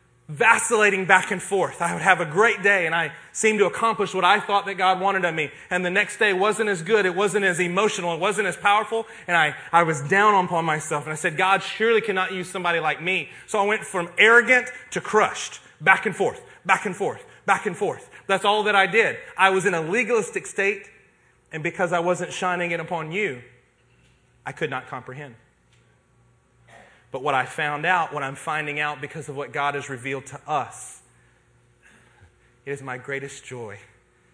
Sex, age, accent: male, 30-49, American